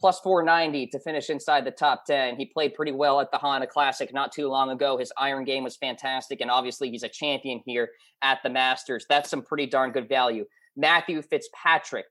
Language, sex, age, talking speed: English, male, 20-39, 210 wpm